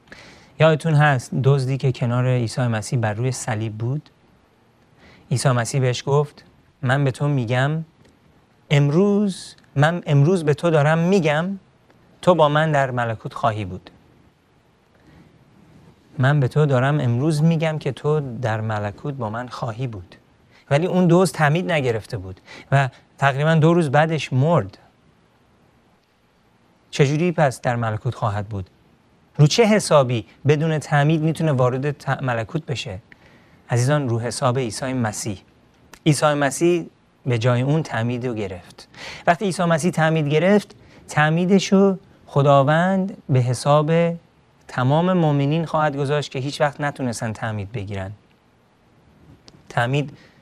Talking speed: 125 wpm